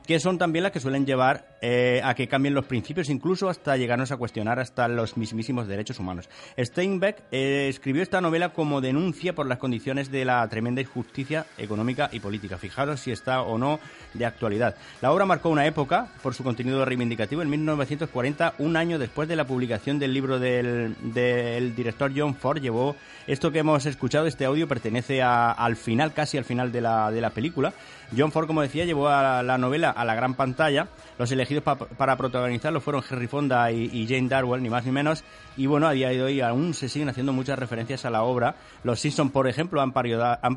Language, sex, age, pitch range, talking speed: Spanish, male, 30-49, 120-145 Hz, 200 wpm